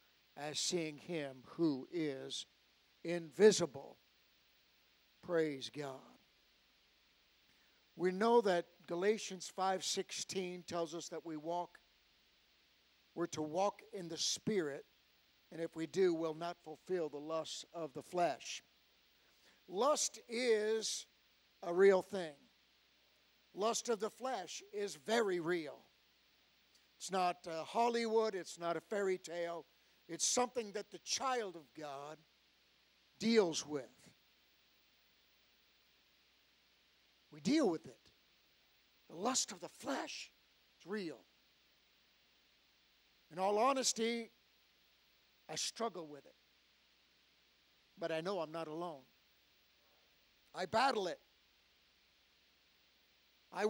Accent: American